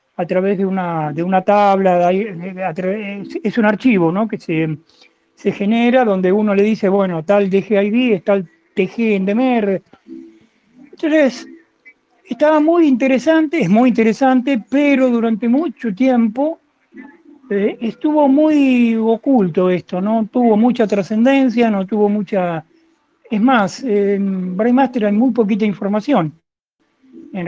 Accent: Argentinian